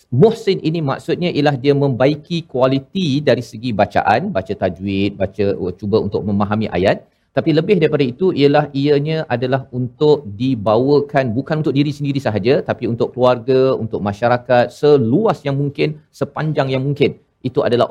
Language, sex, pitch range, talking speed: Malayalam, male, 125-150 Hz, 145 wpm